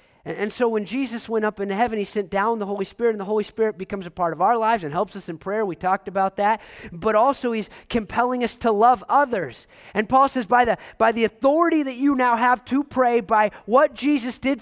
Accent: American